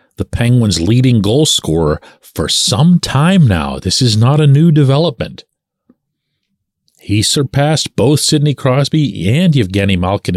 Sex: male